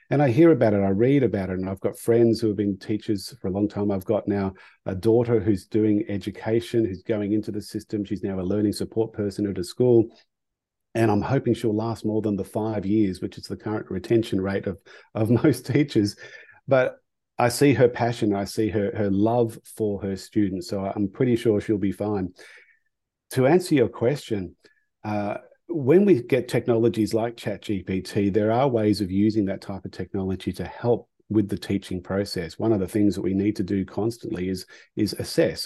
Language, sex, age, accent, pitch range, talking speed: English, male, 40-59, Australian, 100-115 Hz, 205 wpm